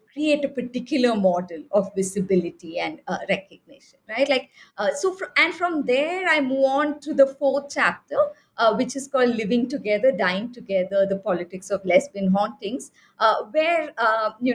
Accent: Indian